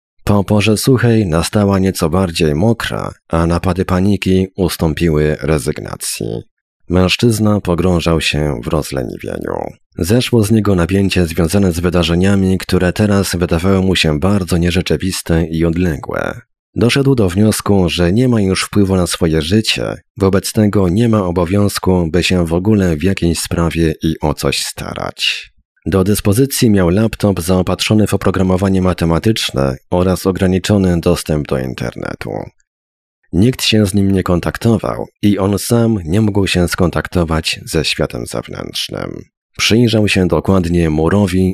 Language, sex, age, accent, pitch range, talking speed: Polish, male, 30-49, native, 85-100 Hz, 135 wpm